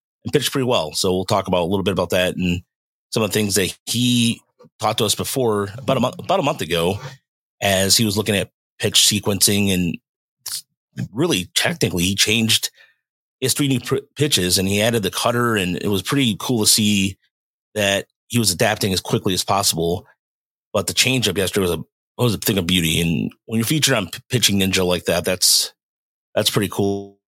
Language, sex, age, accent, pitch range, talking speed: English, male, 30-49, American, 95-120 Hz, 205 wpm